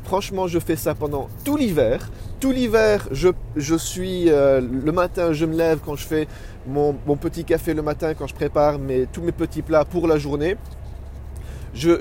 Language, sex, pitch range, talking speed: French, male, 110-175 Hz, 195 wpm